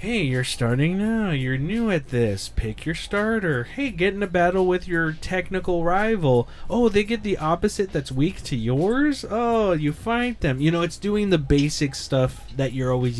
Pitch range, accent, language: 130-185 Hz, American, English